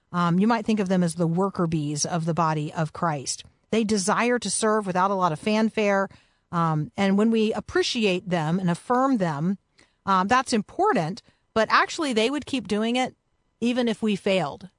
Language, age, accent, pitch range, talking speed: English, 40-59, American, 180-230 Hz, 190 wpm